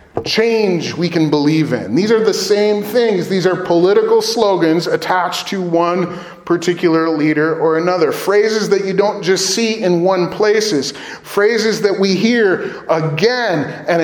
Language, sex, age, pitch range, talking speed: English, male, 30-49, 160-215 Hz, 155 wpm